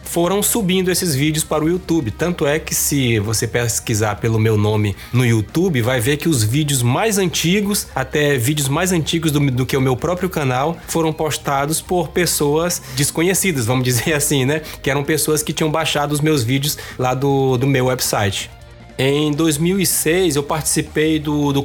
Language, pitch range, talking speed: Portuguese, 120-155 Hz, 180 wpm